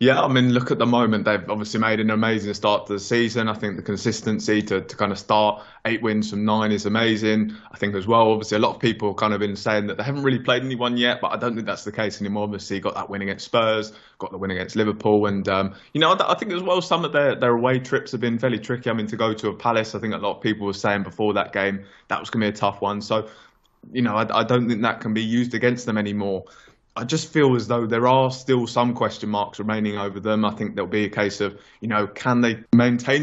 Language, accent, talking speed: English, British, 280 wpm